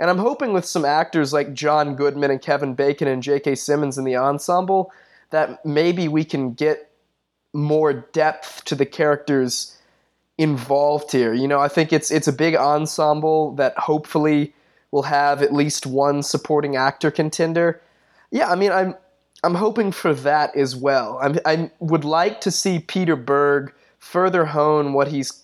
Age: 20-39